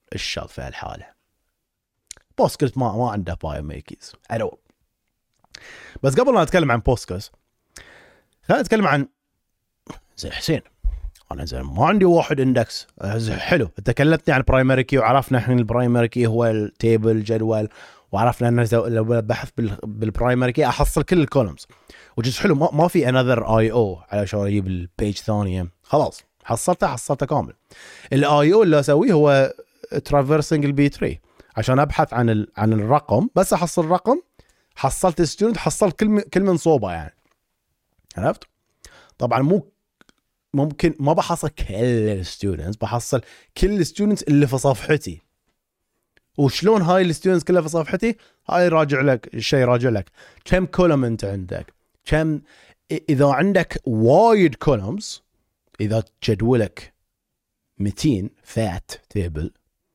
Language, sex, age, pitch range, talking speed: Arabic, male, 30-49, 110-160 Hz, 125 wpm